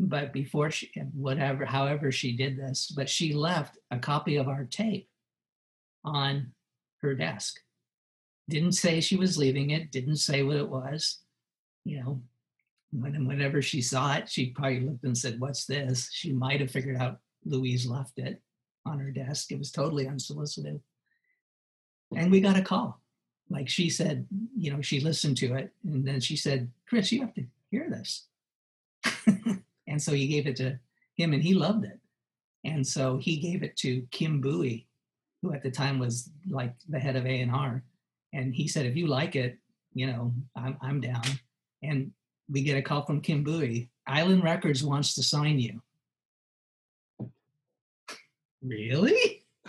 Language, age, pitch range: English, 50-69, 130-170 Hz